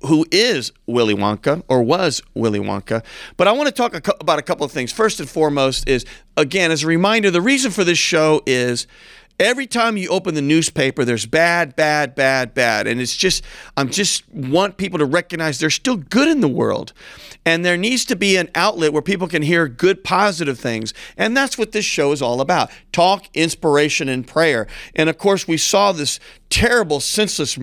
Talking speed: 200 wpm